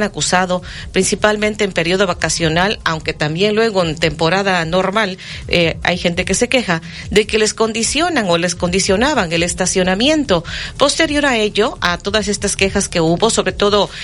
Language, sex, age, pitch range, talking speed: Spanish, female, 40-59, 185-230 Hz, 160 wpm